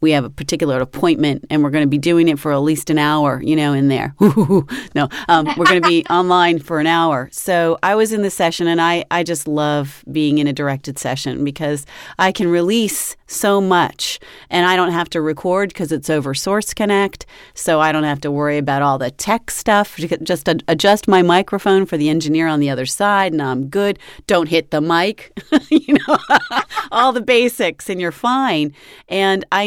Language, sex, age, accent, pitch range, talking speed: English, female, 40-59, American, 155-200 Hz, 210 wpm